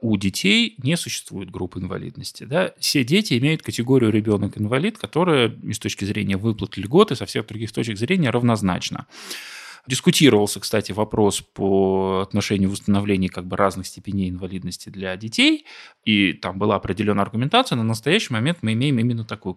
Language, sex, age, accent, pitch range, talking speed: Russian, male, 20-39, native, 100-135 Hz, 145 wpm